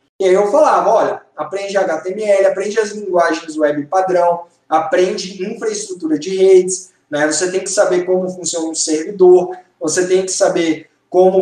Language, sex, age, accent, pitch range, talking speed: Portuguese, male, 20-39, Brazilian, 185-235 Hz, 160 wpm